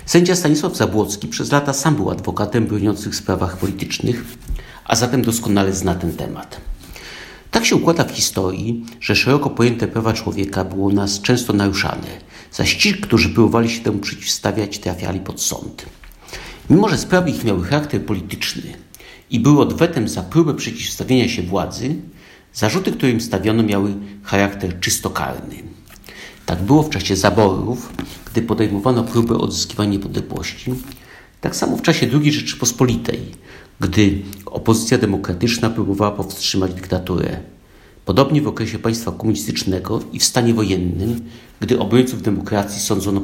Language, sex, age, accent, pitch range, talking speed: Polish, male, 50-69, native, 95-120 Hz, 135 wpm